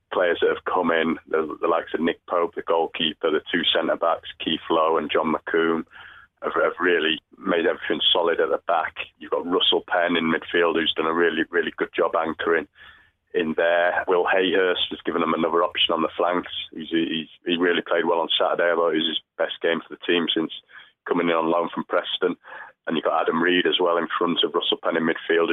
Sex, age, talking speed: male, 30-49, 220 wpm